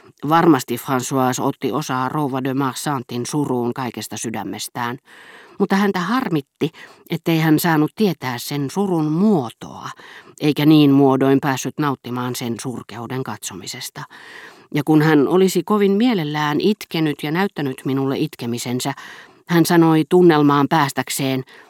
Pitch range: 125-165 Hz